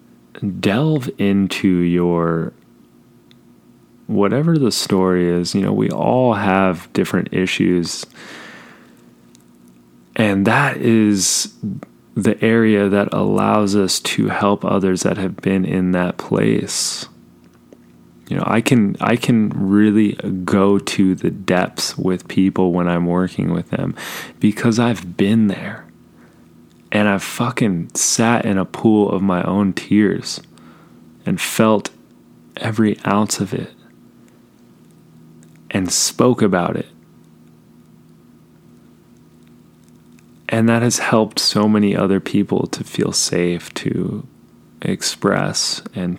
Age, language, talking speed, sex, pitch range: 20-39, English, 115 wpm, male, 80-105 Hz